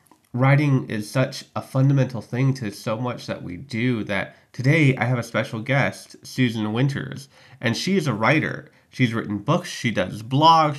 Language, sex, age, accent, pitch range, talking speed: English, male, 30-49, American, 105-130 Hz, 180 wpm